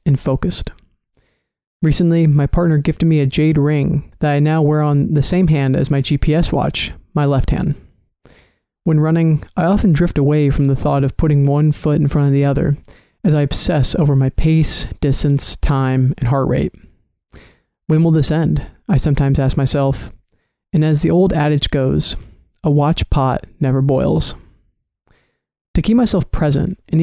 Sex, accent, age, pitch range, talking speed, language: male, American, 30-49, 140-165 Hz, 175 wpm, English